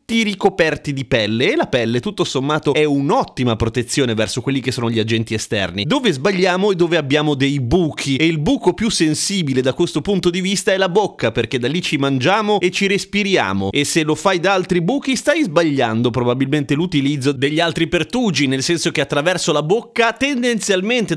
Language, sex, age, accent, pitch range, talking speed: Italian, male, 30-49, native, 135-195 Hz, 195 wpm